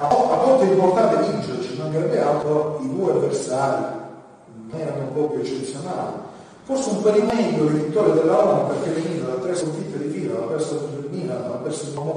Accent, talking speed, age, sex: native, 190 wpm, 40-59, male